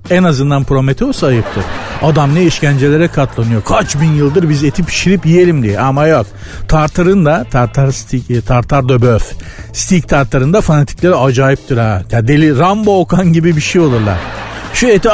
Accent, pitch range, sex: native, 120-175 Hz, male